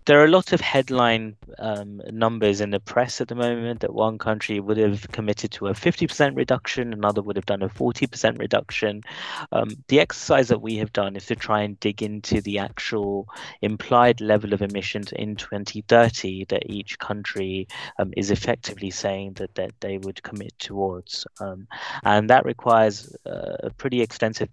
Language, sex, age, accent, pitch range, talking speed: English, male, 20-39, British, 100-115 Hz, 180 wpm